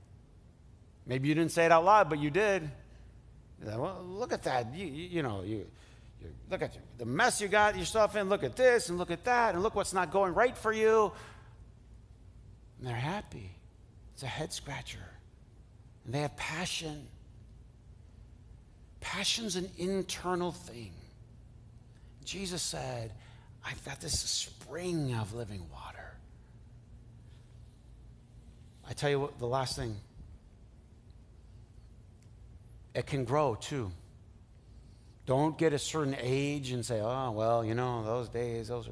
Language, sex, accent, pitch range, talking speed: English, male, American, 110-150 Hz, 145 wpm